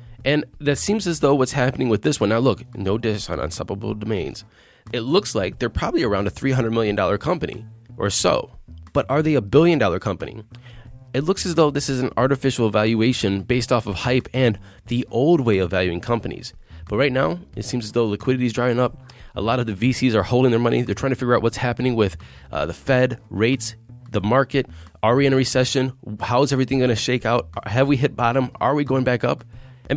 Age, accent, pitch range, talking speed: 20-39, American, 100-130 Hz, 225 wpm